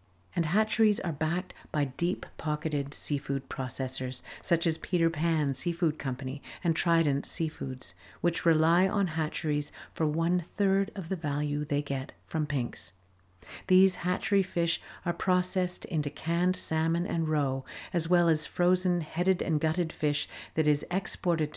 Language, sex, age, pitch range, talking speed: English, female, 50-69, 140-175 Hz, 140 wpm